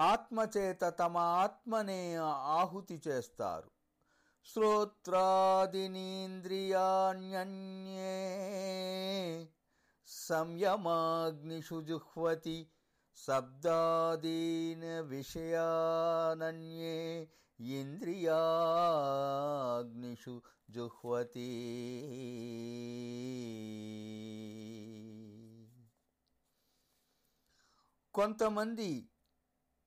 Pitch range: 160-200 Hz